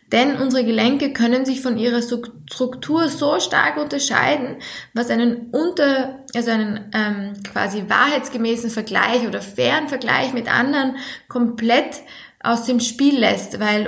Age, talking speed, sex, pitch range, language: 20-39, 135 wpm, female, 225-265 Hz, German